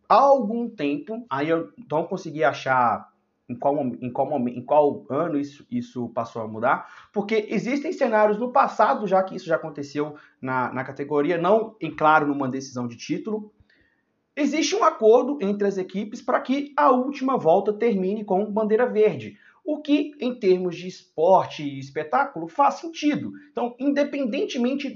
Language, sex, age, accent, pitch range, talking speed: Portuguese, male, 30-49, Brazilian, 160-240 Hz, 160 wpm